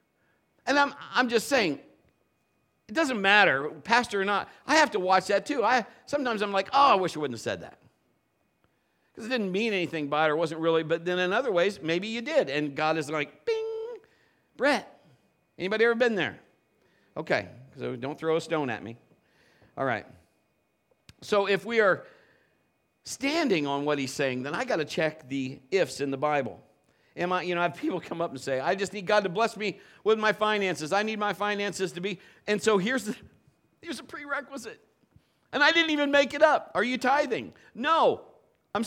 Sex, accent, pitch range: male, American, 170-260 Hz